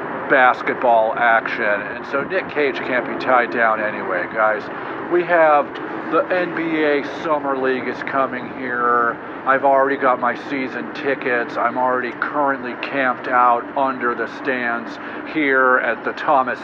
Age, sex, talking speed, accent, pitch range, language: 50-69, male, 140 wpm, American, 115-135 Hz, English